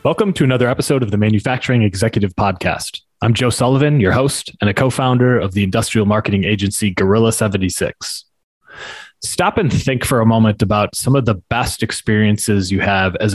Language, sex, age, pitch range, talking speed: English, male, 20-39, 100-125 Hz, 175 wpm